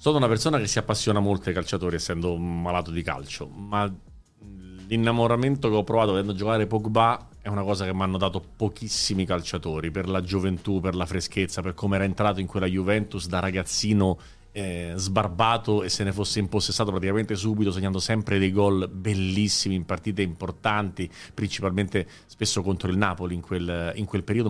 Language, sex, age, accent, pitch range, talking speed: Italian, male, 30-49, native, 90-110 Hz, 175 wpm